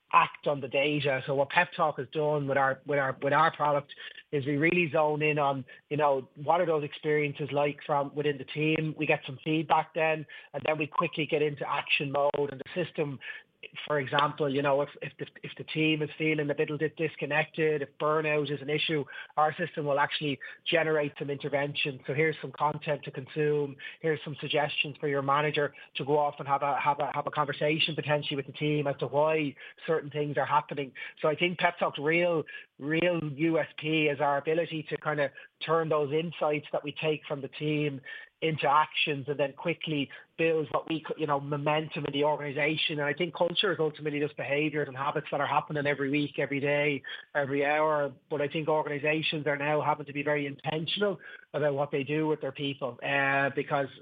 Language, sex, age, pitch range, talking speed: English, male, 20-39, 145-155 Hz, 210 wpm